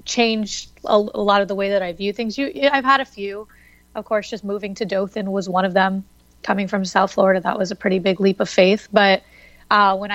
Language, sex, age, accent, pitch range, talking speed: English, female, 30-49, American, 190-210 Hz, 235 wpm